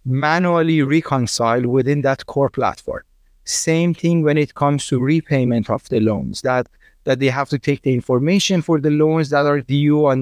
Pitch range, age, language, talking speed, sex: 130-150 Hz, 30-49, English, 180 wpm, male